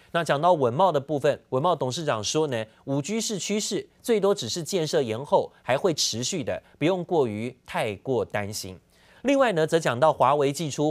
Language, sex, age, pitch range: Chinese, male, 30-49, 130-175 Hz